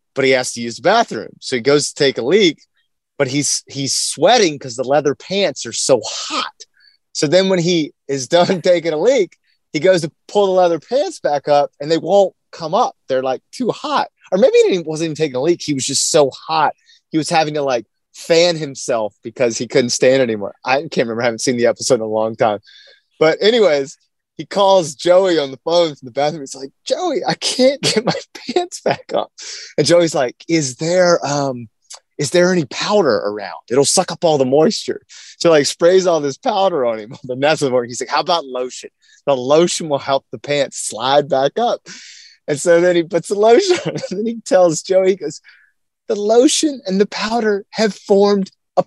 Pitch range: 140-200 Hz